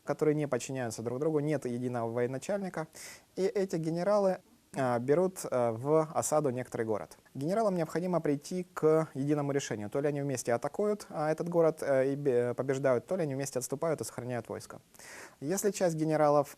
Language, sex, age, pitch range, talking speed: Russian, male, 20-39, 120-160 Hz, 150 wpm